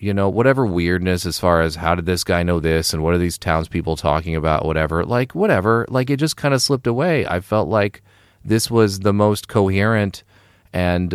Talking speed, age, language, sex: 210 wpm, 40-59, English, male